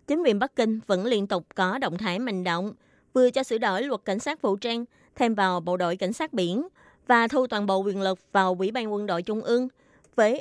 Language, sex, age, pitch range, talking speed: Vietnamese, female, 20-39, 190-255 Hz, 240 wpm